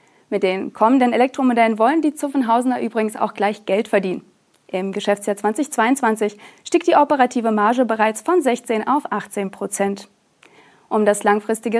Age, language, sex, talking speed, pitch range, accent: 30-49, German, female, 140 wpm, 215-270 Hz, German